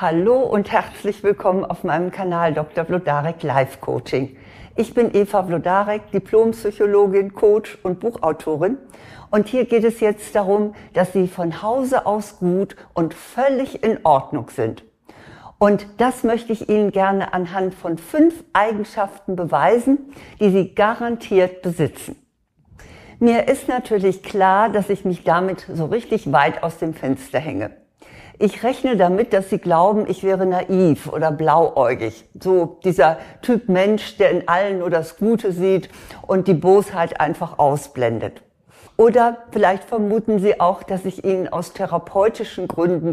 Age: 60-79